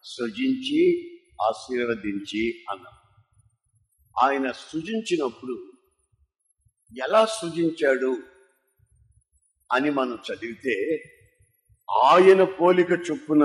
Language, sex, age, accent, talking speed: Telugu, male, 50-69, native, 60 wpm